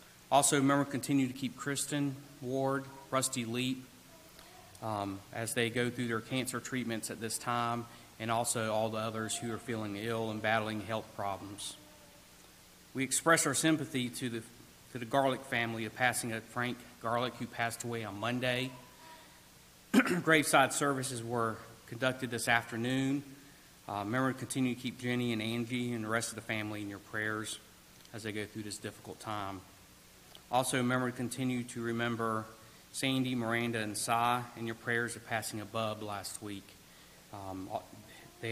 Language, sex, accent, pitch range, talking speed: English, male, American, 110-130 Hz, 160 wpm